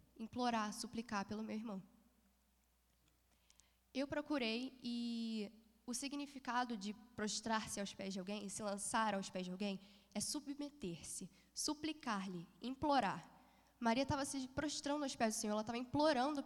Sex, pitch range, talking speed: female, 205-260 Hz, 140 wpm